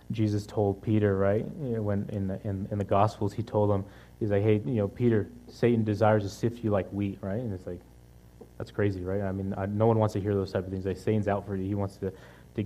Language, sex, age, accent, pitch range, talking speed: English, male, 20-39, American, 95-105 Hz, 270 wpm